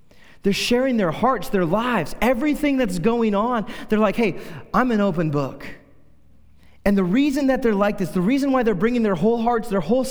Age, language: 30-49, English